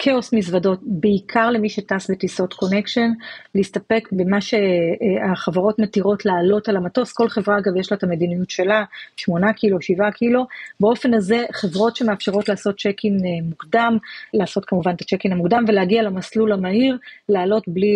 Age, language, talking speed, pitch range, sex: 30-49, Hebrew, 145 wpm, 190-225 Hz, female